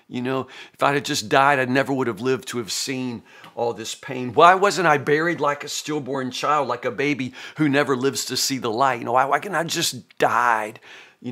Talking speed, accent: 240 wpm, American